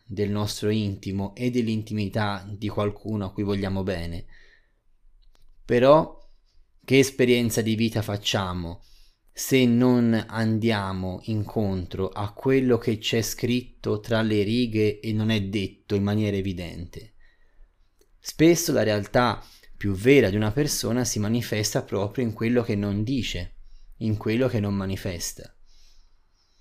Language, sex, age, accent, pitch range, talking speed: Italian, male, 20-39, native, 100-120 Hz, 130 wpm